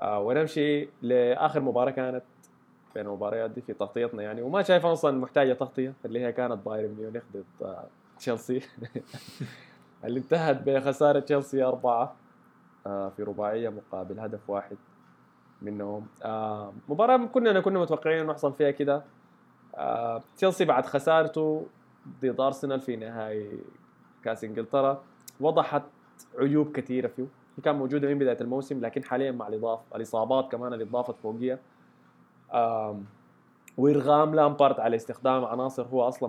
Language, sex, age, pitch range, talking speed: Arabic, male, 20-39, 115-145 Hz, 125 wpm